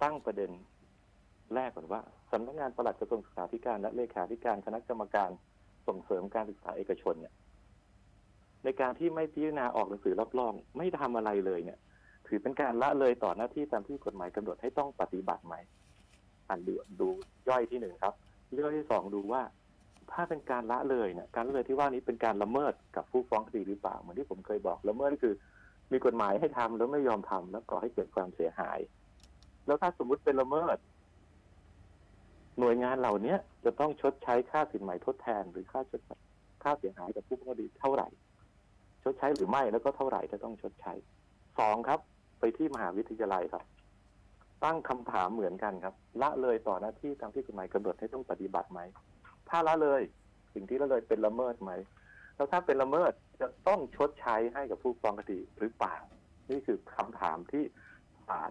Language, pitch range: Thai, 100-140 Hz